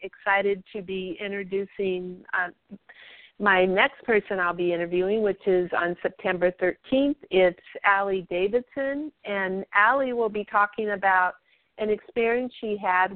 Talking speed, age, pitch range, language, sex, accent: 130 wpm, 50-69, 180-210 Hz, English, female, American